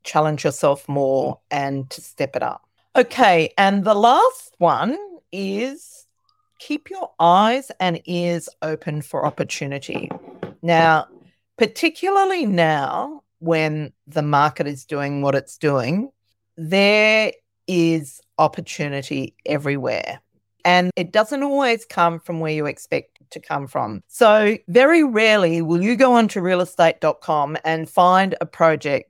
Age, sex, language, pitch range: 40-59, female, English, 150-200 Hz